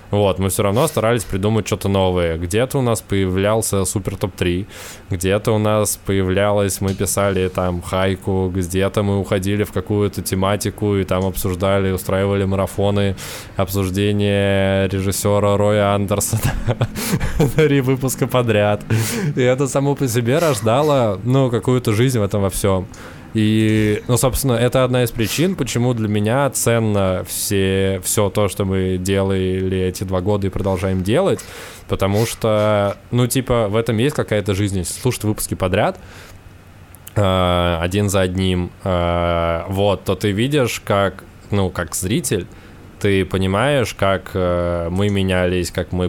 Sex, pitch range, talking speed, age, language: male, 95-110 Hz, 140 wpm, 20-39, Russian